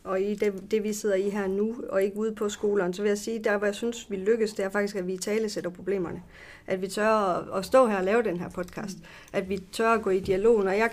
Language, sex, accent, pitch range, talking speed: Danish, female, native, 190-225 Hz, 285 wpm